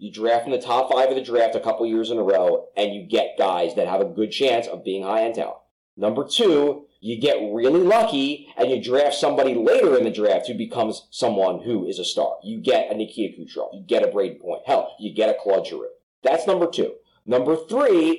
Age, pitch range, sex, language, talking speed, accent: 30-49, 145-235 Hz, male, English, 235 wpm, American